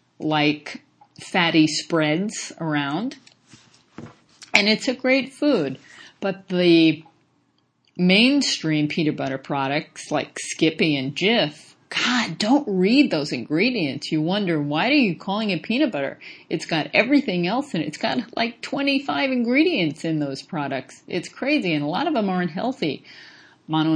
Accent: American